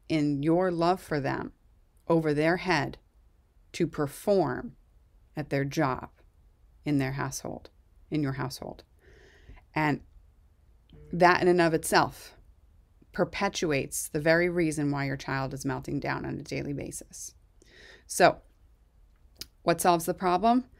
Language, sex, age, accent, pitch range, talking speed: English, female, 30-49, American, 155-185 Hz, 125 wpm